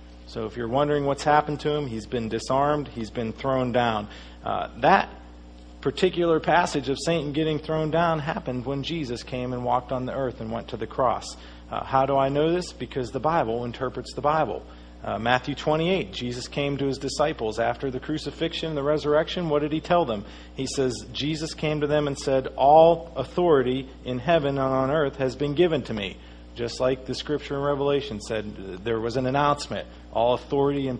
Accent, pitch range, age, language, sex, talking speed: American, 115-150 Hz, 40-59, English, male, 195 wpm